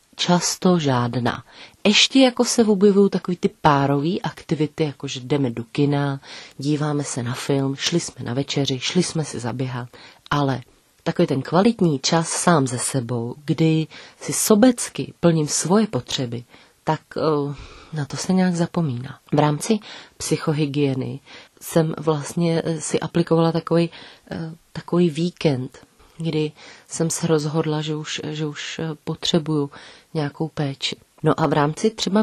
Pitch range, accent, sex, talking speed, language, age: 145-170 Hz, native, female, 140 wpm, Czech, 30-49